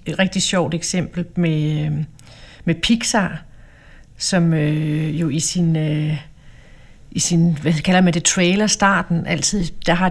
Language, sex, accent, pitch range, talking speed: Danish, female, native, 165-210 Hz, 135 wpm